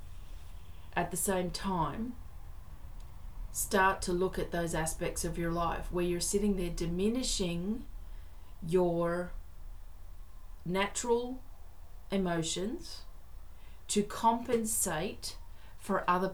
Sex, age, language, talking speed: female, 30-49, English, 90 wpm